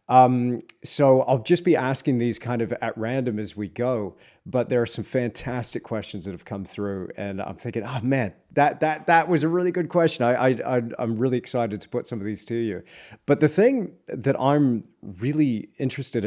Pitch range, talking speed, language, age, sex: 110-135 Hz, 205 wpm, English, 30-49, male